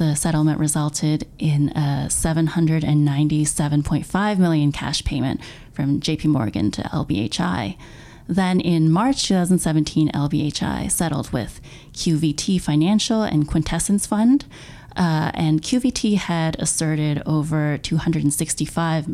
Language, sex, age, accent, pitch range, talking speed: English, female, 30-49, American, 150-180 Hz, 105 wpm